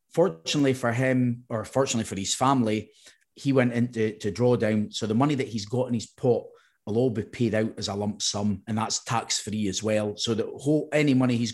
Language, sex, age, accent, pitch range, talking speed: English, male, 30-49, British, 110-140 Hz, 220 wpm